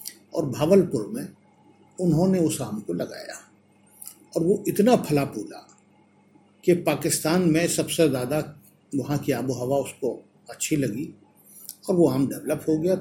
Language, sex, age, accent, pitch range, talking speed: Hindi, male, 50-69, native, 140-170 Hz, 140 wpm